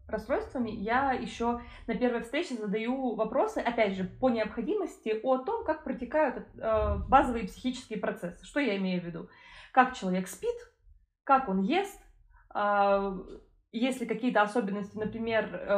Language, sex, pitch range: Russian, female, 195-245 Hz